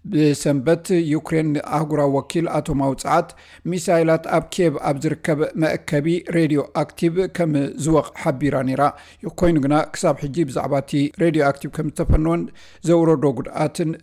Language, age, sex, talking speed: Amharic, 50-69, male, 105 wpm